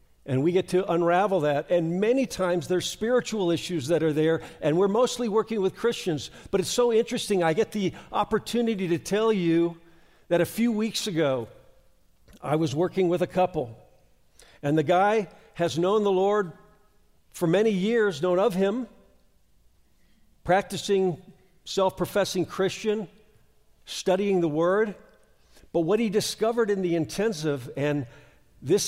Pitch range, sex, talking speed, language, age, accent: 150-200 Hz, male, 150 wpm, English, 50-69, American